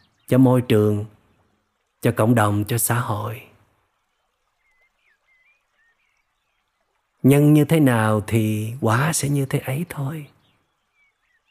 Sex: male